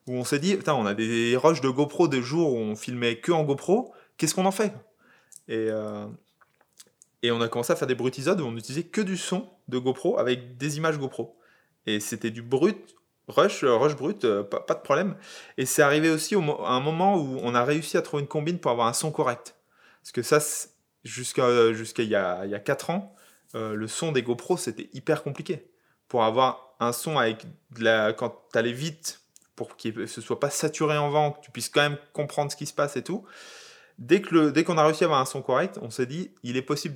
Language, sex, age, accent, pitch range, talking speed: French, male, 20-39, French, 120-155 Hz, 235 wpm